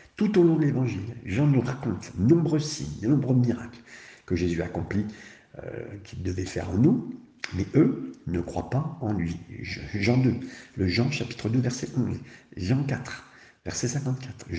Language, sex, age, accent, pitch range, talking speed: French, male, 50-69, French, 90-130 Hz, 175 wpm